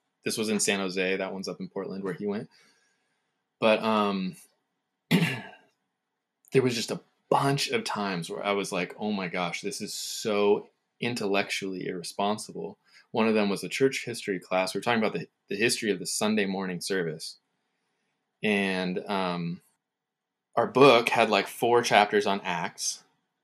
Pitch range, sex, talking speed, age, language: 95-120 Hz, male, 165 wpm, 20-39, English